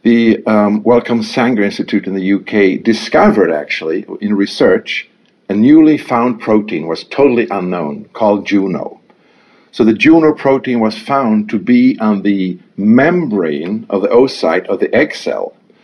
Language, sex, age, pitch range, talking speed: Danish, male, 50-69, 100-125 Hz, 150 wpm